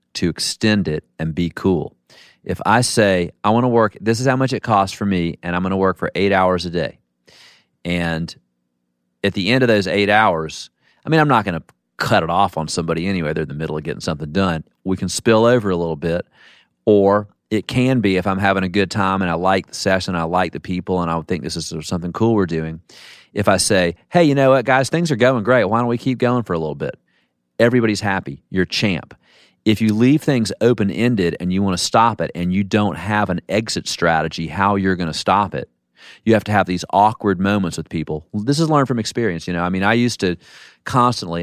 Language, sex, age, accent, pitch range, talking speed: English, male, 40-59, American, 85-110 Hz, 245 wpm